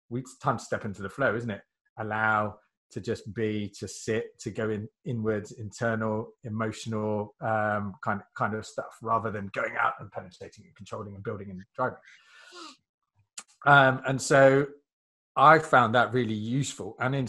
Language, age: English, 20-39